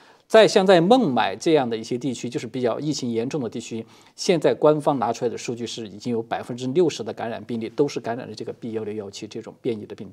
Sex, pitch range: male, 115-155 Hz